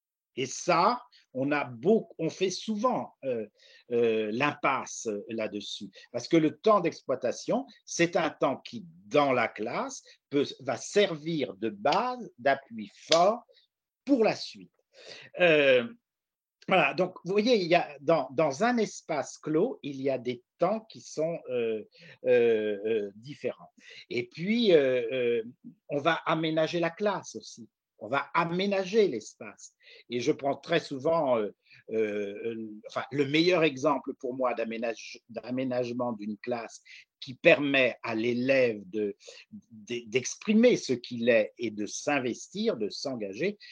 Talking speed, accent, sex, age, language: 140 wpm, French, male, 50-69, French